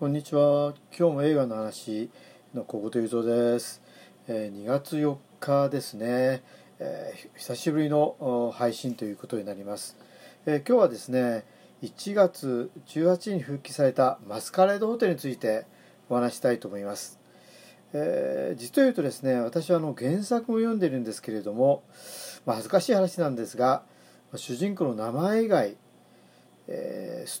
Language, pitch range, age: Japanese, 120-175 Hz, 40-59